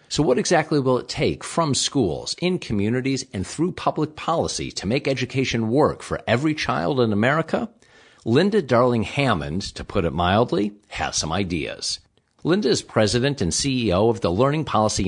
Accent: American